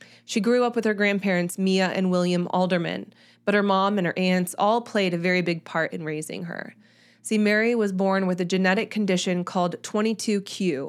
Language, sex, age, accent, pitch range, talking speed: English, female, 20-39, American, 180-215 Hz, 195 wpm